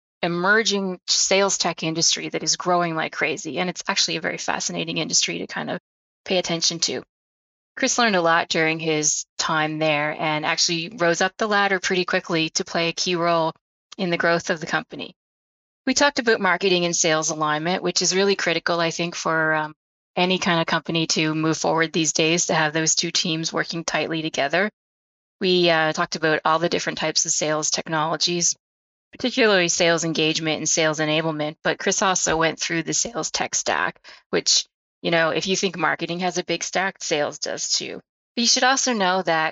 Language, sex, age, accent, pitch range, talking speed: English, female, 20-39, American, 160-190 Hz, 195 wpm